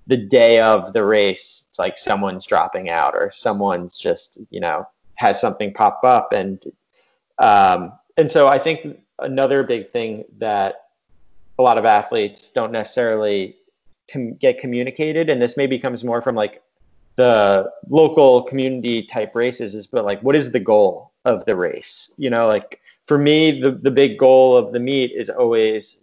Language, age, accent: English, 30-49, American